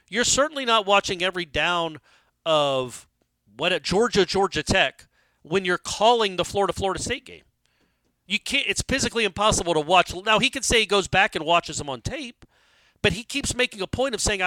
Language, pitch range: English, 155-210 Hz